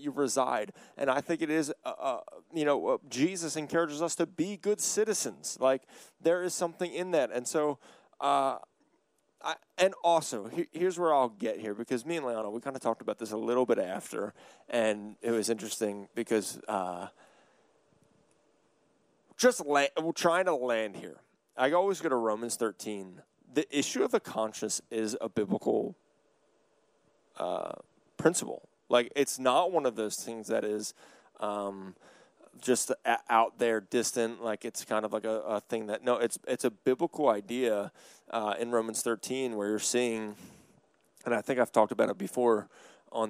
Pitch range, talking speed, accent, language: 110-145 Hz, 170 wpm, American, English